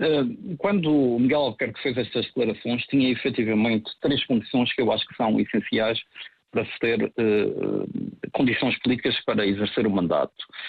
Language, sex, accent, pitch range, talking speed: Portuguese, male, Portuguese, 120-155 Hz, 150 wpm